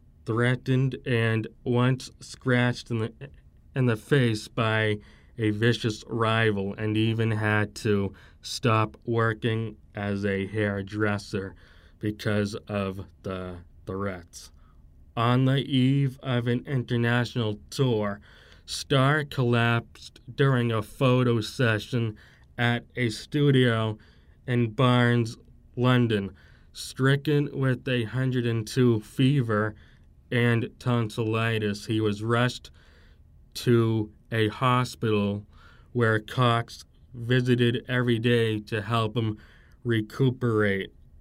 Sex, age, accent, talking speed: male, 20-39, American, 100 wpm